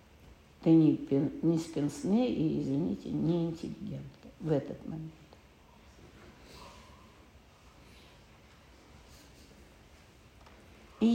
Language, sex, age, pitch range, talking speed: Russian, female, 60-79, 155-225 Hz, 60 wpm